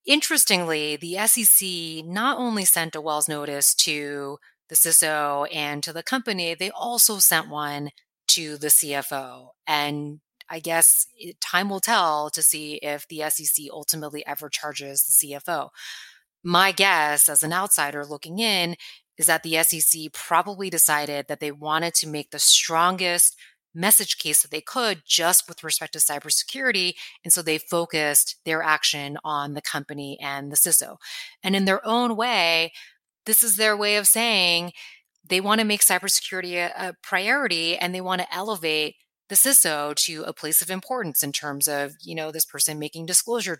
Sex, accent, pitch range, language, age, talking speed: female, American, 150-185 Hz, English, 30-49, 165 wpm